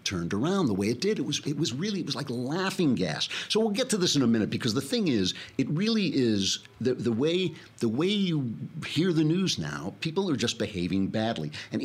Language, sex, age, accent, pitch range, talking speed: English, male, 50-69, American, 95-125 Hz, 240 wpm